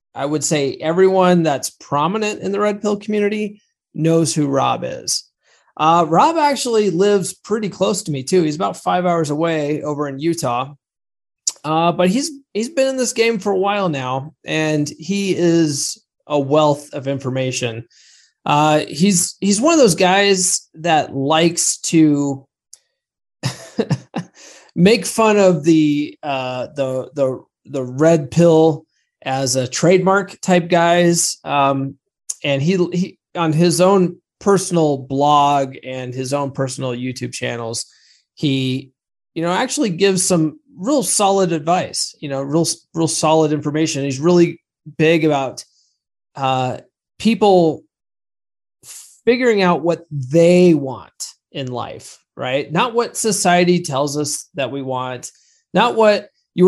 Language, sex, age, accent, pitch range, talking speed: English, male, 20-39, American, 140-190 Hz, 140 wpm